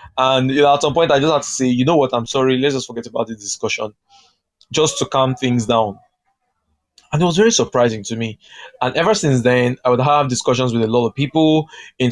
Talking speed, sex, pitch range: 230 wpm, male, 110-140 Hz